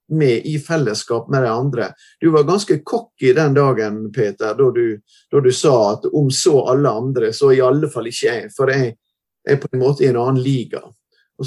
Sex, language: male, English